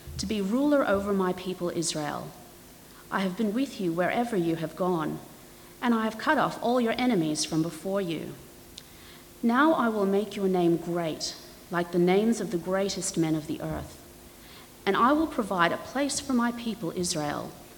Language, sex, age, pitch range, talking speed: English, female, 40-59, 170-220 Hz, 180 wpm